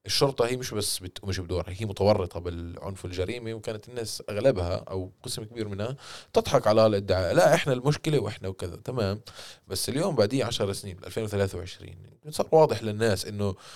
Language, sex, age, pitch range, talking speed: Arabic, male, 20-39, 95-115 Hz, 165 wpm